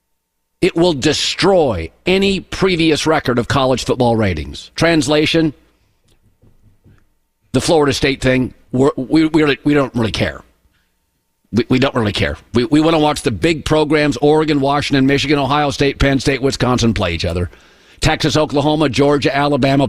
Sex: male